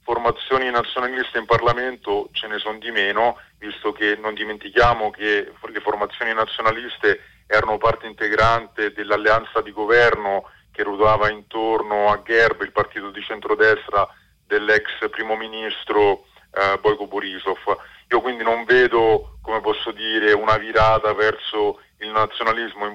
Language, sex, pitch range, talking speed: Italian, male, 105-120 Hz, 135 wpm